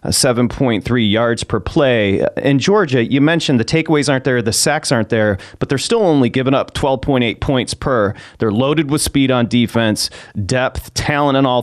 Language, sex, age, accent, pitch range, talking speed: English, male, 30-49, American, 115-140 Hz, 180 wpm